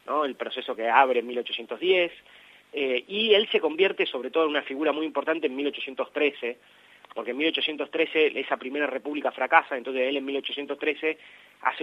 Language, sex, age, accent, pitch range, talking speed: Spanish, male, 30-49, Argentinian, 130-180 Hz, 160 wpm